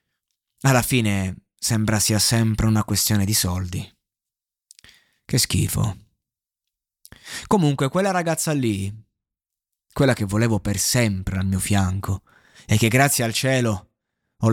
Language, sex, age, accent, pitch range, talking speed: Italian, male, 20-39, native, 100-125 Hz, 120 wpm